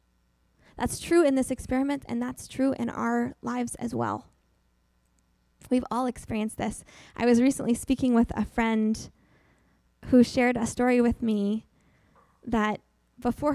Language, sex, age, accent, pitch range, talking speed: English, female, 10-29, American, 215-260 Hz, 140 wpm